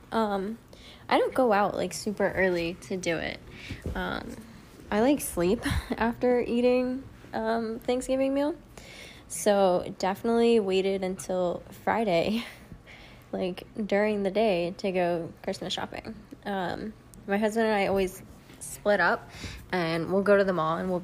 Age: 10-29